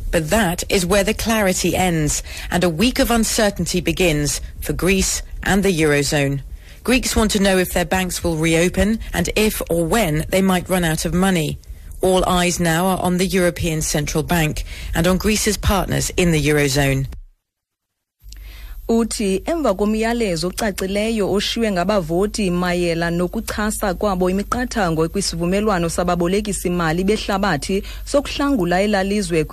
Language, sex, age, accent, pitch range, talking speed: English, female, 40-59, British, 160-200 Hz, 155 wpm